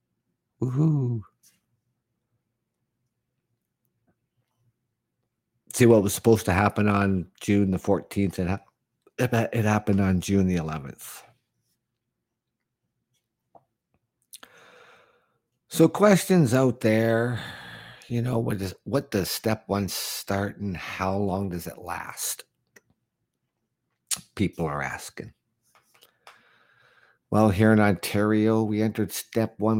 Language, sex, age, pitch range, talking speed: English, male, 50-69, 90-115 Hz, 95 wpm